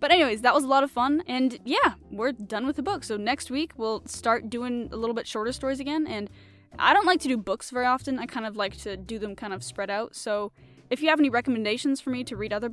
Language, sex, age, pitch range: English, female, 10-29, 225-280 Hz